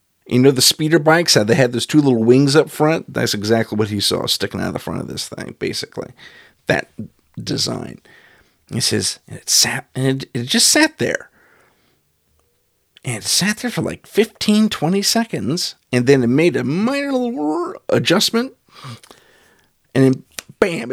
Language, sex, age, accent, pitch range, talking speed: English, male, 50-69, American, 115-155 Hz, 175 wpm